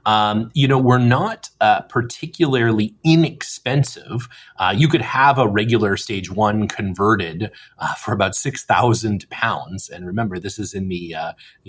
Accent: American